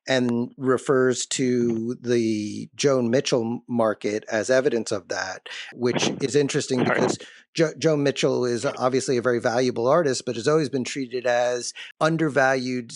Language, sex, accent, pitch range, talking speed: English, male, American, 115-140 Hz, 145 wpm